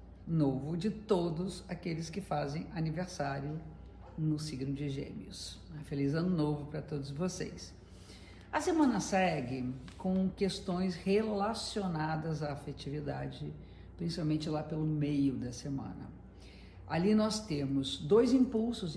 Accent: Brazilian